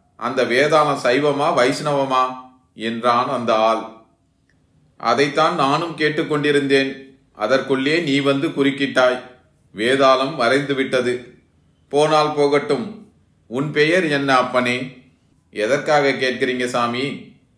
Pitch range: 125-140 Hz